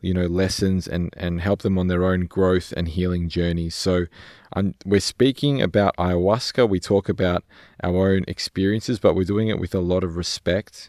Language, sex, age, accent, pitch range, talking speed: English, male, 20-39, Australian, 85-100 Hz, 195 wpm